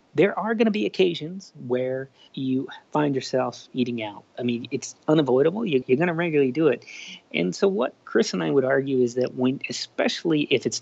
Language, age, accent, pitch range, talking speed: English, 30-49, American, 120-150 Hz, 200 wpm